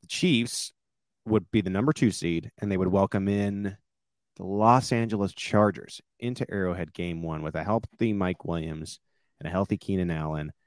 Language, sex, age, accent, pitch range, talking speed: English, male, 30-49, American, 80-105 Hz, 170 wpm